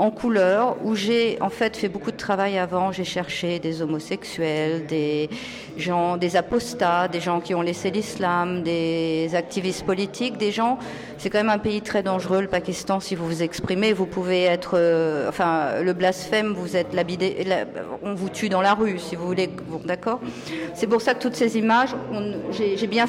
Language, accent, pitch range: Italian, French, 175-215 Hz